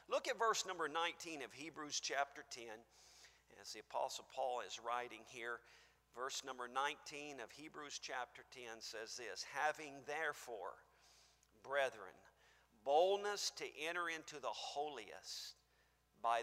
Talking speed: 130 wpm